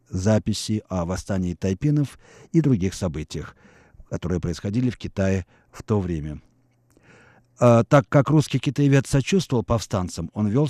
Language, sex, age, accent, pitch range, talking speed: Russian, male, 50-69, native, 105-135 Hz, 130 wpm